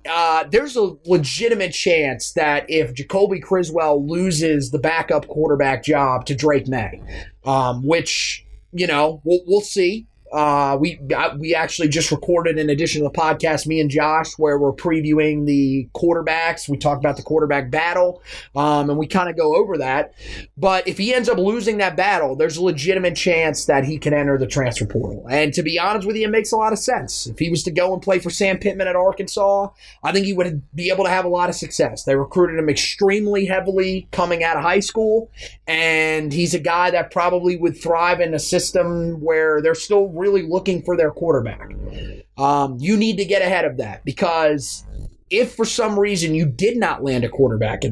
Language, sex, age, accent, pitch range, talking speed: English, male, 30-49, American, 145-185 Hz, 205 wpm